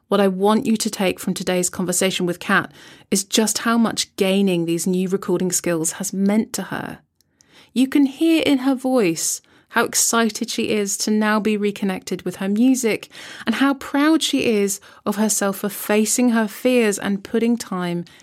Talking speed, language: 180 wpm, English